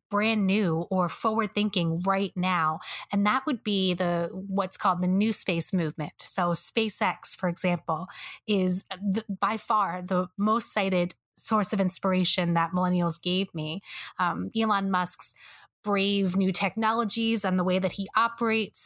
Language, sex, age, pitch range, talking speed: English, female, 20-39, 180-215 Hz, 155 wpm